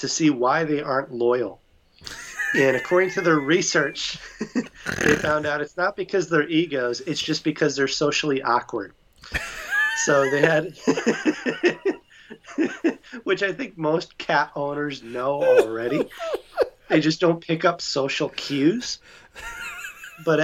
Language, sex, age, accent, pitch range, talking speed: English, male, 30-49, American, 125-170 Hz, 130 wpm